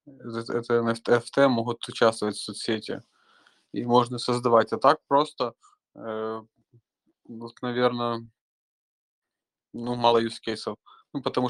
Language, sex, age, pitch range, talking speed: Russian, male, 20-39, 115-125 Hz, 105 wpm